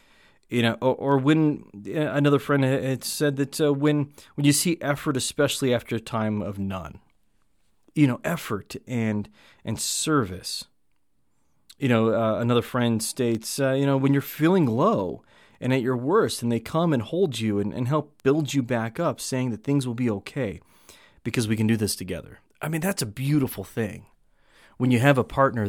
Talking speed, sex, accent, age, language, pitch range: 190 wpm, male, American, 30-49, English, 105-140 Hz